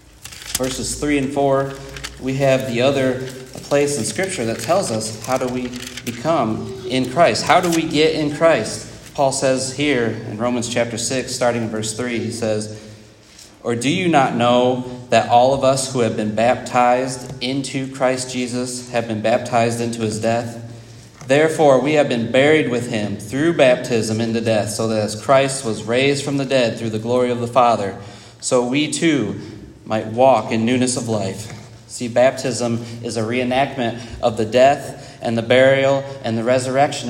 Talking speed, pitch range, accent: 180 wpm, 115-145 Hz, American